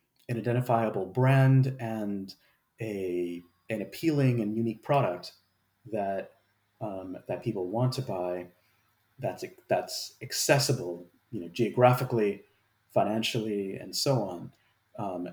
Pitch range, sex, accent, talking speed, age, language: 95-120 Hz, male, American, 110 wpm, 30-49, English